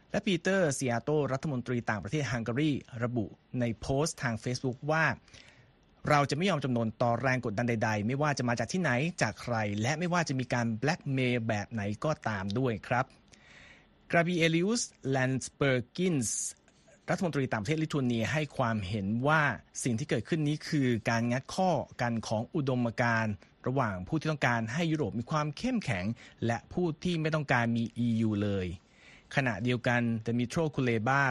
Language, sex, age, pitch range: Thai, male, 30-49, 115-150 Hz